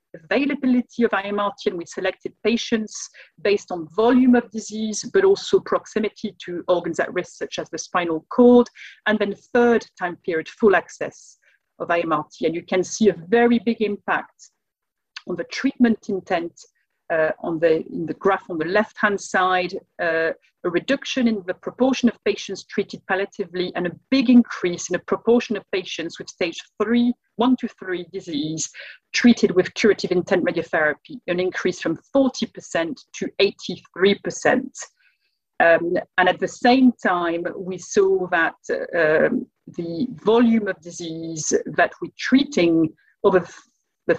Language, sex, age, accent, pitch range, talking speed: English, female, 40-59, French, 175-235 Hz, 155 wpm